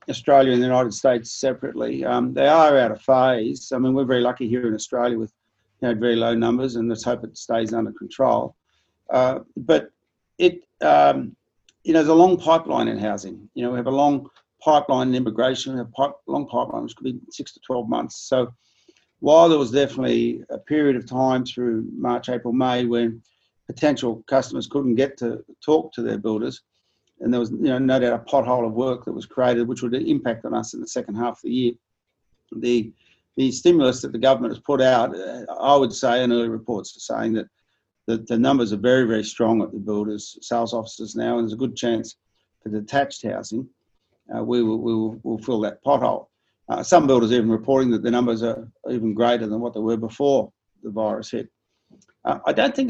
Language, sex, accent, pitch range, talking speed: English, male, Australian, 115-130 Hz, 205 wpm